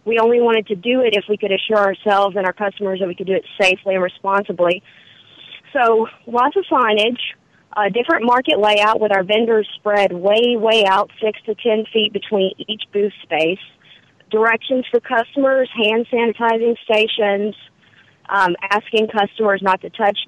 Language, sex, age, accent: English, female, 30-49, American